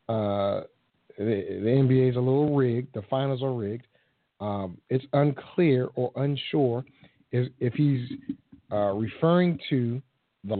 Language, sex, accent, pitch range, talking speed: English, male, American, 115-140 Hz, 135 wpm